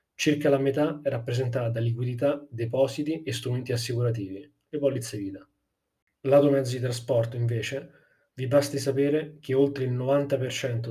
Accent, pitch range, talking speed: native, 115-140 Hz, 145 wpm